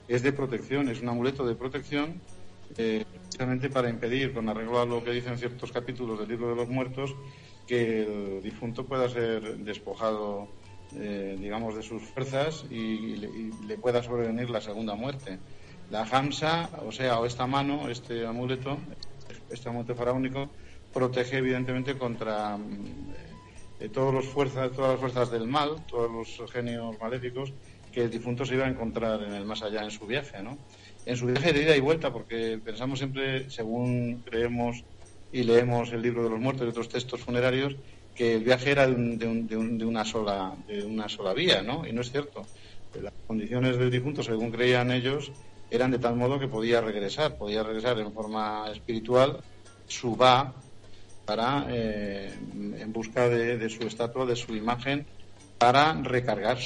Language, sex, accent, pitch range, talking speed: Spanish, male, Spanish, 110-130 Hz, 175 wpm